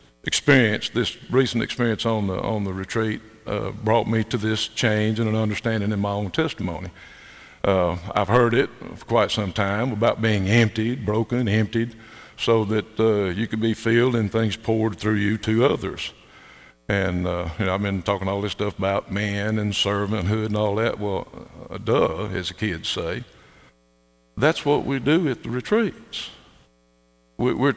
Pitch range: 90-120 Hz